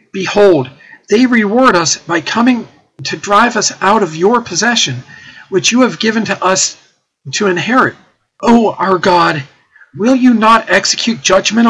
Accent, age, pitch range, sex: American, 50-69, 155-210 Hz, male